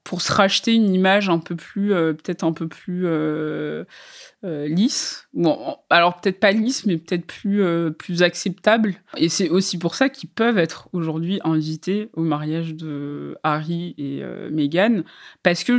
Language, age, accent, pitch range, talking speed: French, 20-39, French, 155-185 Hz, 175 wpm